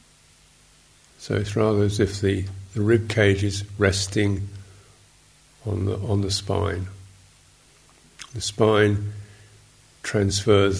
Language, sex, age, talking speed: English, male, 50-69, 100 wpm